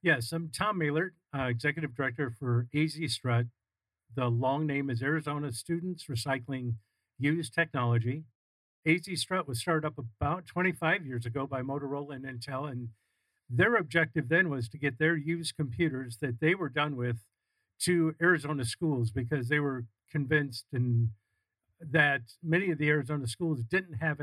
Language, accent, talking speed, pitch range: English, American, 155 wpm, 125-155 Hz